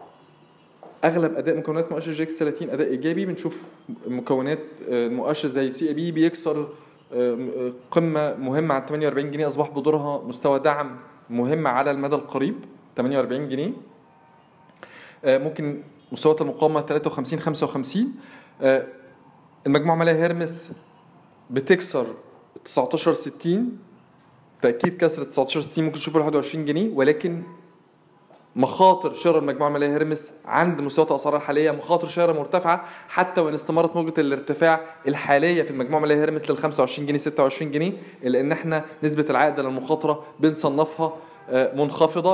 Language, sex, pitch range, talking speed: Arabic, male, 145-165 Hz, 125 wpm